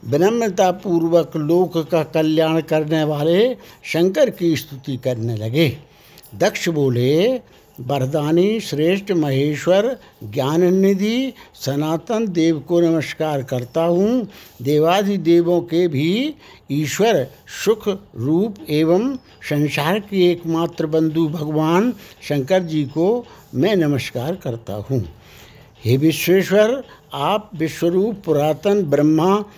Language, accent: Hindi, native